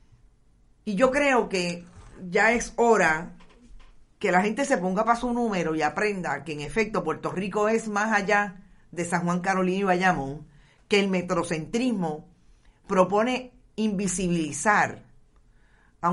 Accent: American